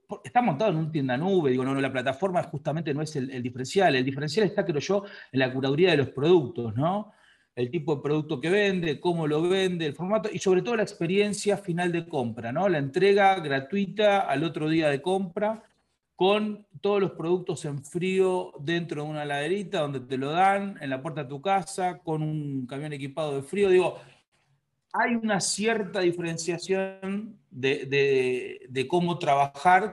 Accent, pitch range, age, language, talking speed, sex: Argentinian, 135-195 Hz, 40-59, Spanish, 185 wpm, male